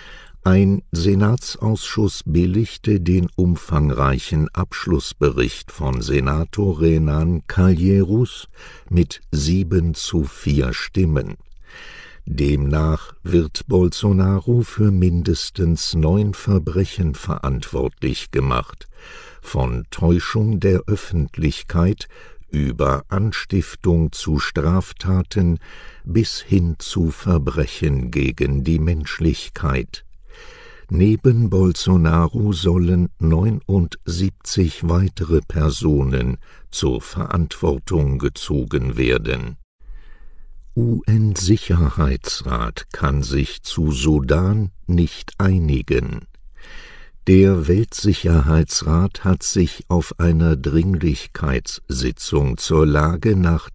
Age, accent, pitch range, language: 60-79, German, 75-95 Hz, English